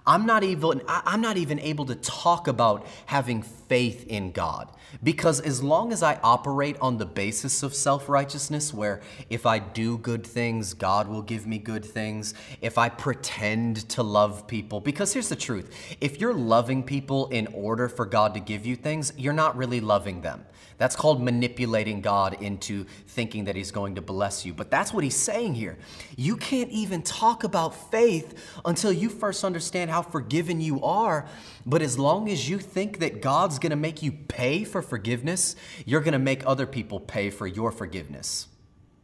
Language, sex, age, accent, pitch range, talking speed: English, male, 30-49, American, 100-140 Hz, 185 wpm